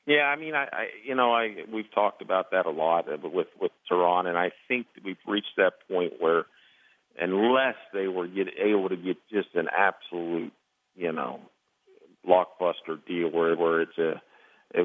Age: 50-69